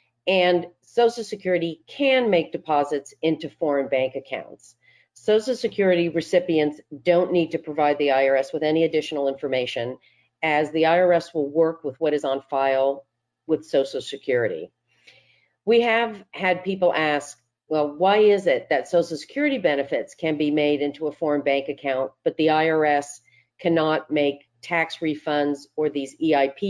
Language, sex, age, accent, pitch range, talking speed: English, female, 50-69, American, 140-175 Hz, 150 wpm